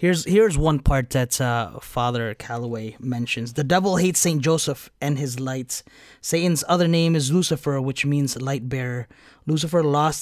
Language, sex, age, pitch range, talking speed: English, male, 20-39, 130-170 Hz, 165 wpm